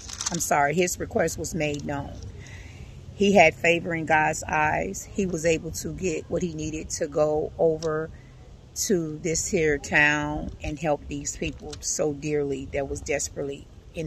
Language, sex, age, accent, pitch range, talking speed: English, female, 40-59, American, 145-180 Hz, 160 wpm